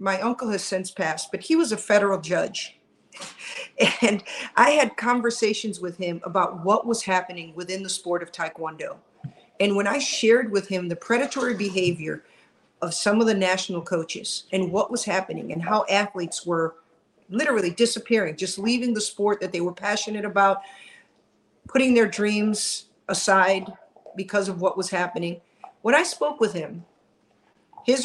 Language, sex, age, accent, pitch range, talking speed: English, female, 50-69, American, 185-235 Hz, 160 wpm